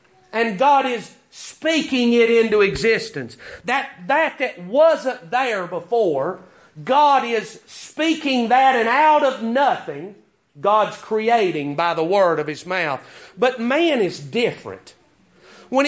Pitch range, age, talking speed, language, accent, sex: 205-265 Hz, 40-59, 130 wpm, English, American, male